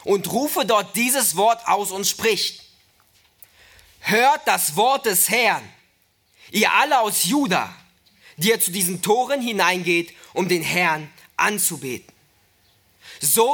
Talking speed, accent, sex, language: 125 wpm, German, male, German